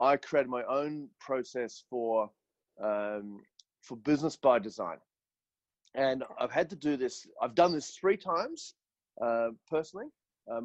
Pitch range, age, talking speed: 125-155 Hz, 30-49, 135 wpm